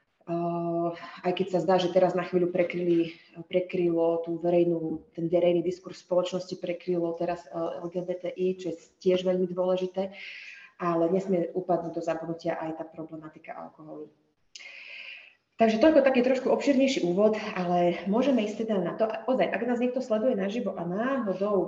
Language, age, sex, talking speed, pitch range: Slovak, 30-49, female, 150 wpm, 170-195 Hz